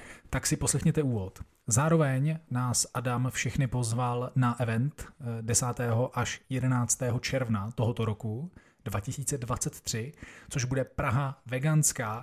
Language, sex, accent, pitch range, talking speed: Czech, male, native, 120-140 Hz, 110 wpm